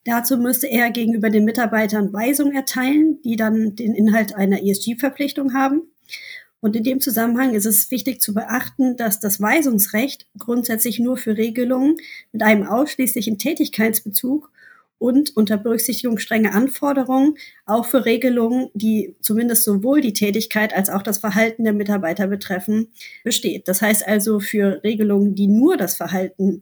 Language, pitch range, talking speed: German, 205-250 Hz, 150 wpm